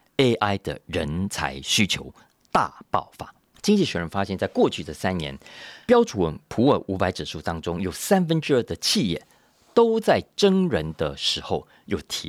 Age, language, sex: 40-59, Chinese, male